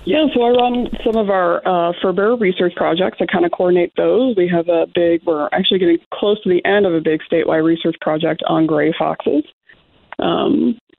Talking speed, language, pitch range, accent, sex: 200 wpm, English, 175-205 Hz, American, female